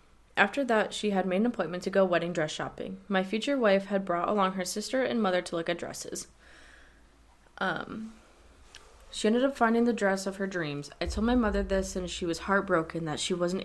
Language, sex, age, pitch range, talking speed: English, female, 20-39, 170-200 Hz, 210 wpm